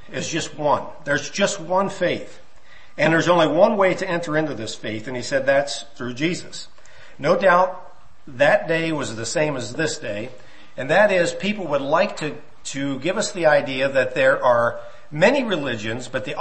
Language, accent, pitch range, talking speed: English, American, 125-170 Hz, 190 wpm